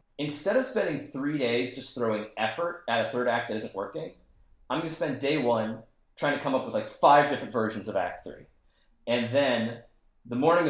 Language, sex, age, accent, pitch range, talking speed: English, male, 30-49, American, 110-145 Hz, 210 wpm